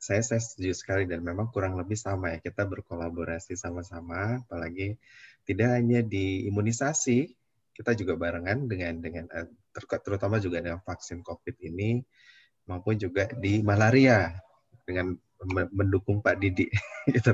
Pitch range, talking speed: 90-110 Hz, 130 wpm